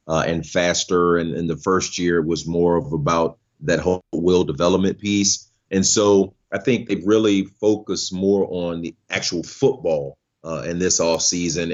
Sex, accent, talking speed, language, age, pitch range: male, American, 175 wpm, English, 30-49, 90-100 Hz